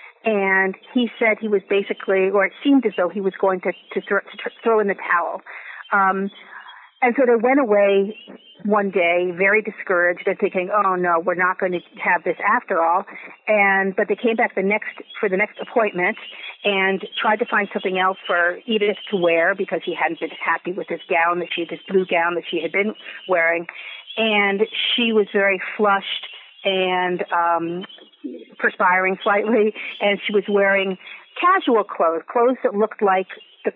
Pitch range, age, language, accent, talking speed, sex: 190-220 Hz, 50-69, English, American, 185 wpm, female